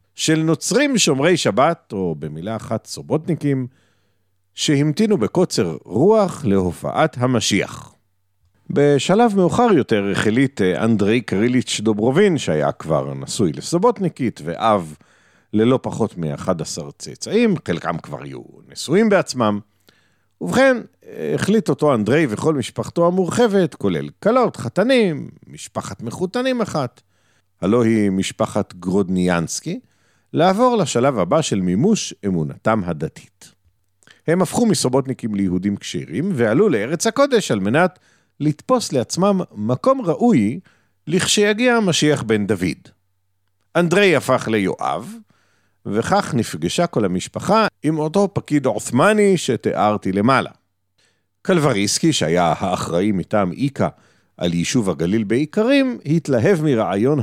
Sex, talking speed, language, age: male, 105 wpm, Hebrew, 50-69